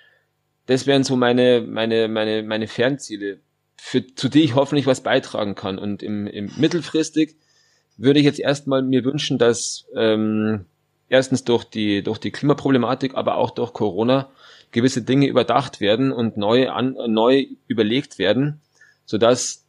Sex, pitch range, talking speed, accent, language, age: male, 115-140 Hz, 150 wpm, German, German, 30-49